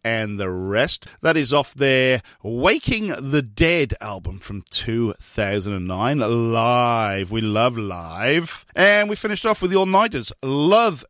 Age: 40-59